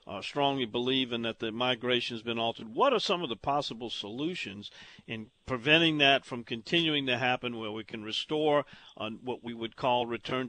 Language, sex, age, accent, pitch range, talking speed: English, male, 50-69, American, 115-135 Hz, 195 wpm